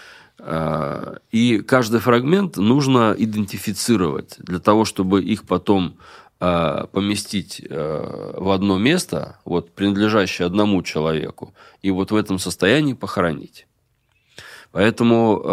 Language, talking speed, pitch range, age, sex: Russian, 95 wpm, 90-110 Hz, 20-39, male